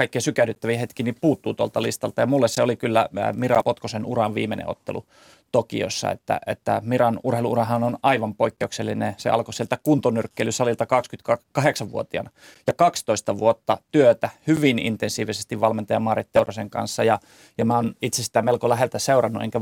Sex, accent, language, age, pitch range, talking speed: male, native, Finnish, 30-49, 110-125 Hz, 155 wpm